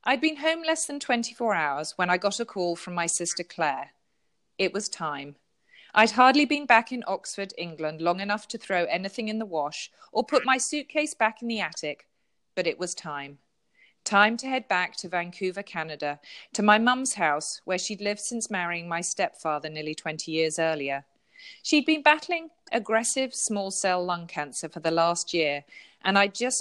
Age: 40-59